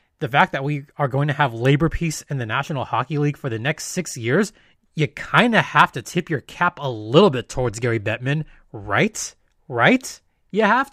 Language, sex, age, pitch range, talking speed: English, male, 20-39, 135-175 Hz, 210 wpm